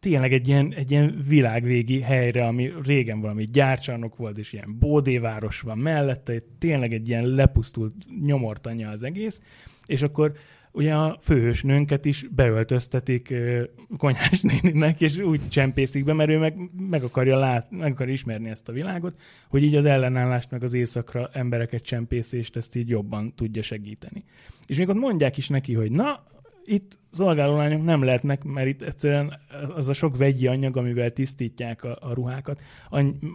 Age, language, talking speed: 20-39, Hungarian, 160 wpm